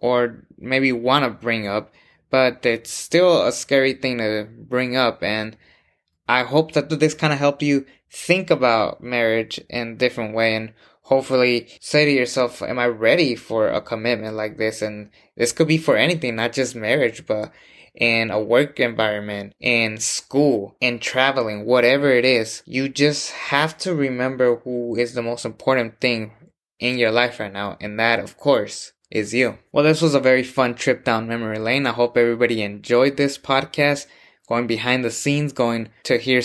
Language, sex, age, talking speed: English, male, 20-39, 180 wpm